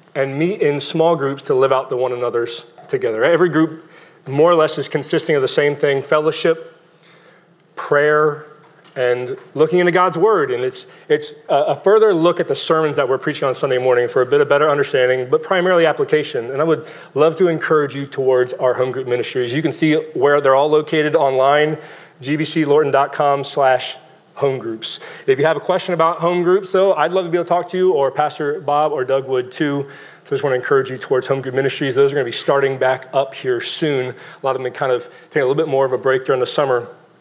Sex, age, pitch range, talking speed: male, 30-49, 135-170 Hz, 225 wpm